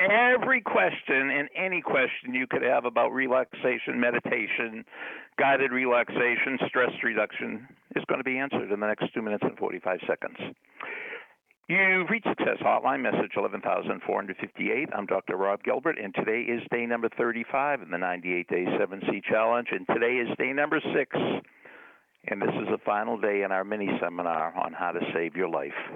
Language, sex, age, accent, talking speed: English, male, 60-79, American, 160 wpm